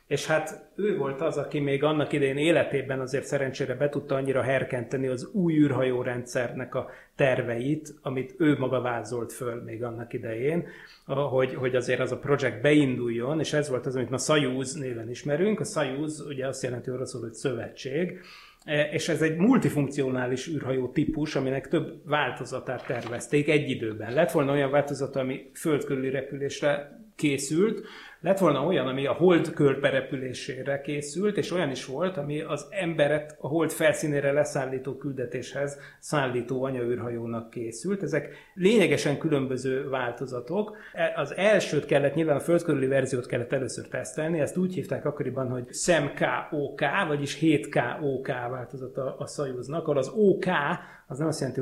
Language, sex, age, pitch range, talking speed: Hungarian, male, 30-49, 130-155 Hz, 150 wpm